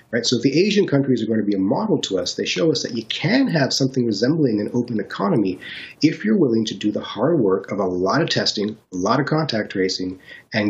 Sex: male